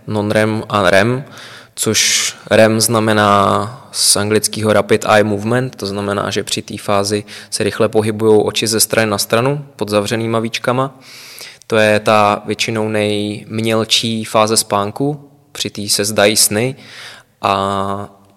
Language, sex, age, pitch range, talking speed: Czech, male, 20-39, 105-115 Hz, 135 wpm